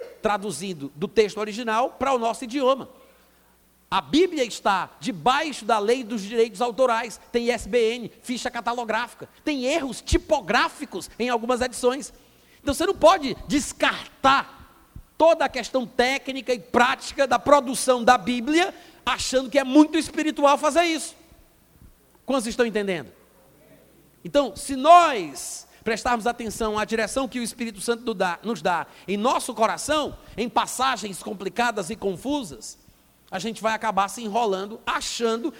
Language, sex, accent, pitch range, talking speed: Portuguese, male, Brazilian, 220-285 Hz, 135 wpm